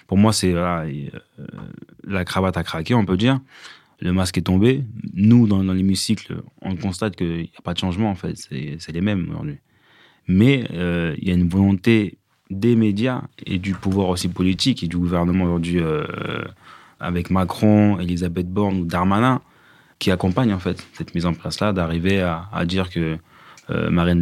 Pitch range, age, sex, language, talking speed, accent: 85-100 Hz, 20-39, male, French, 180 wpm, French